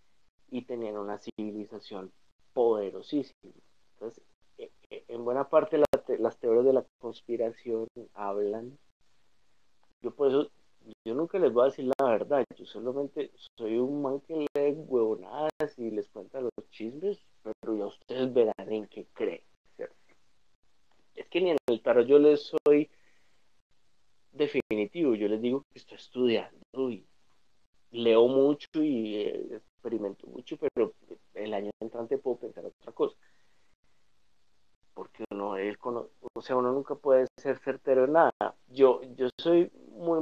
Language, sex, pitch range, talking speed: Spanish, male, 115-165 Hz, 145 wpm